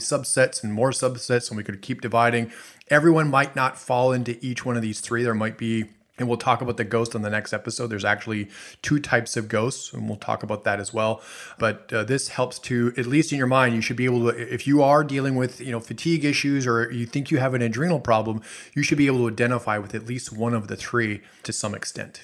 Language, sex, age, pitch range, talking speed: English, male, 30-49, 110-130 Hz, 250 wpm